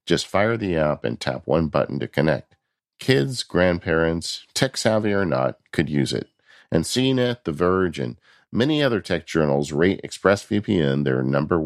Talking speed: 165 wpm